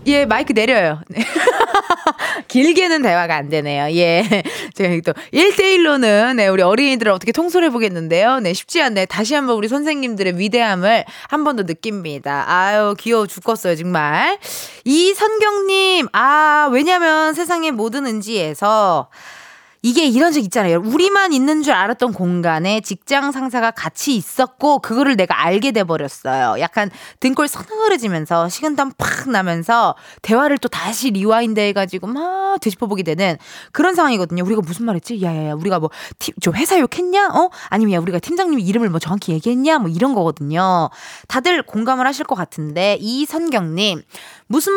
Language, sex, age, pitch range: Korean, female, 20-39, 190-310 Hz